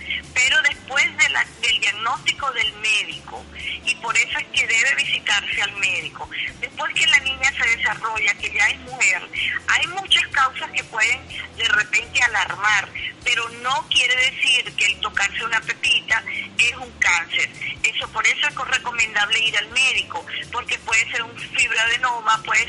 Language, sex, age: Spanish, female, 40-59